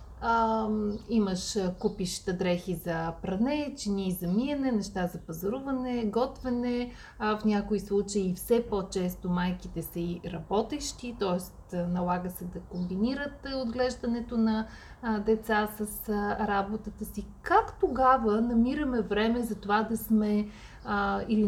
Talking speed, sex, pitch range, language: 115 wpm, female, 195-240 Hz, Bulgarian